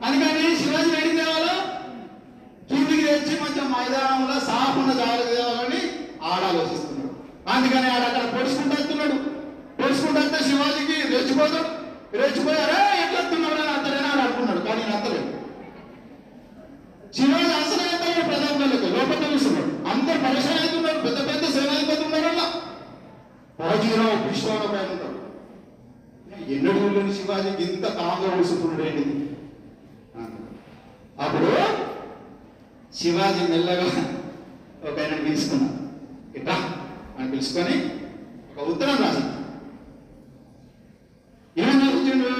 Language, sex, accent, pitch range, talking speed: Telugu, male, native, 240-300 Hz, 75 wpm